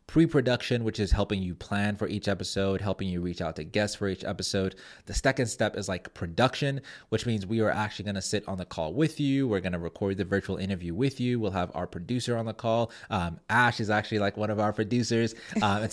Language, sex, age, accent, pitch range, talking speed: English, male, 30-49, American, 95-120 Hz, 240 wpm